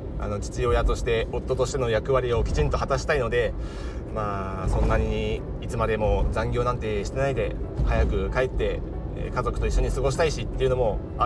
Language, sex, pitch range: Japanese, male, 105-135 Hz